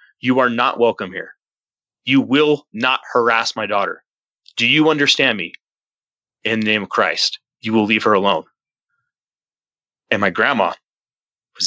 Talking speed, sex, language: 150 wpm, male, English